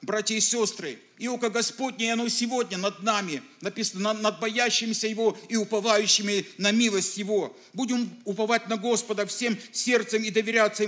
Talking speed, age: 150 wpm, 50-69